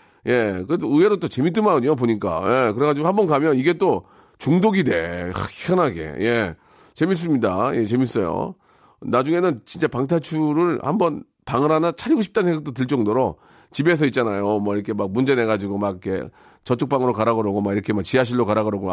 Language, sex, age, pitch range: Korean, male, 40-59, 120-180 Hz